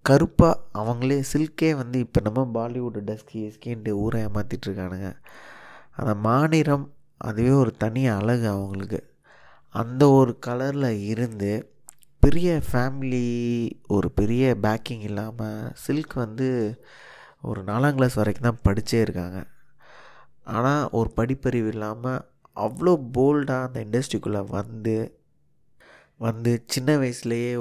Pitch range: 105-130 Hz